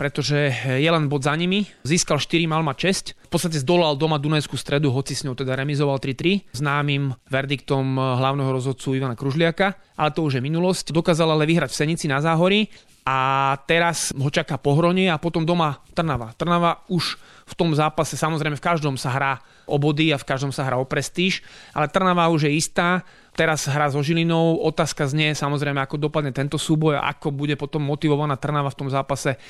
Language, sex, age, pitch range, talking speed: Slovak, male, 30-49, 140-165 Hz, 185 wpm